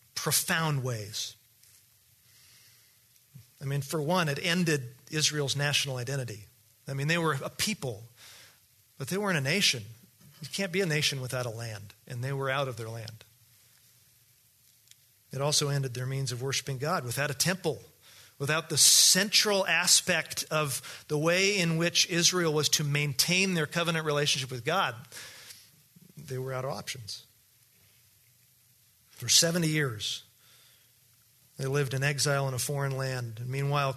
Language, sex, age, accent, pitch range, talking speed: English, male, 40-59, American, 120-150 Hz, 145 wpm